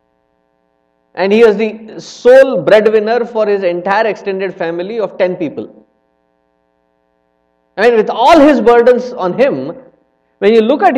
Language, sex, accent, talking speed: English, male, Indian, 140 wpm